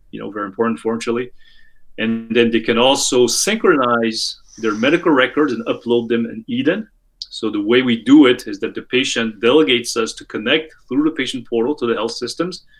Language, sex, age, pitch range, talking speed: English, male, 30-49, 120-165 Hz, 190 wpm